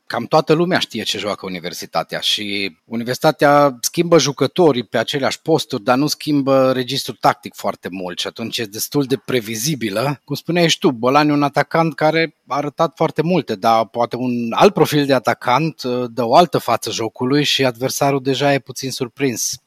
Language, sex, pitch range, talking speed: Romanian, male, 115-150 Hz, 175 wpm